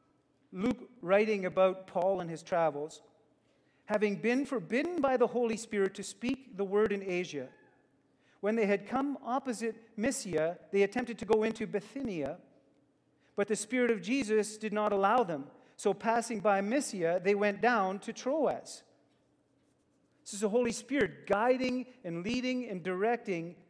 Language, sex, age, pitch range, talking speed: English, male, 40-59, 170-235 Hz, 150 wpm